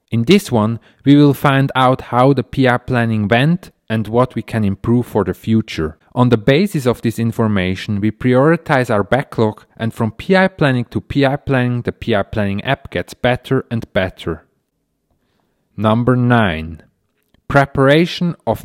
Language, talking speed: English, 160 wpm